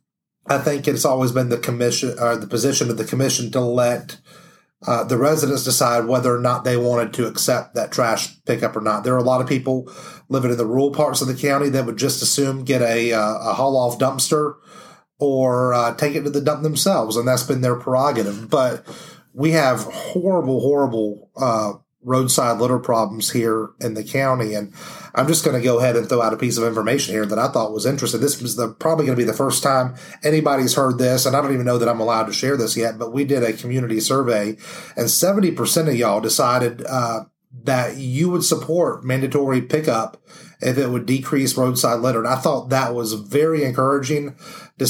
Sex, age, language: male, 30-49, English